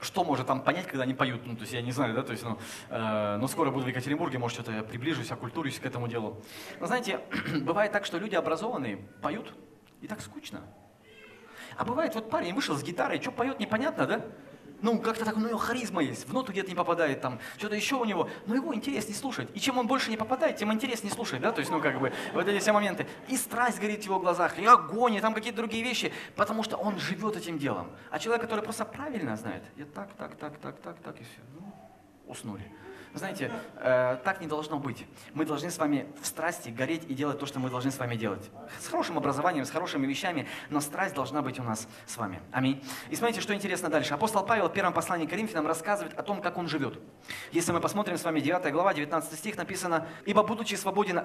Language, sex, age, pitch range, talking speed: Russian, male, 20-39, 140-220 Hz, 235 wpm